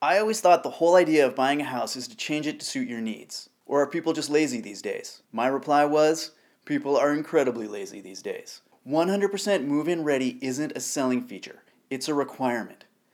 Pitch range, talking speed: 130-170 Hz, 200 wpm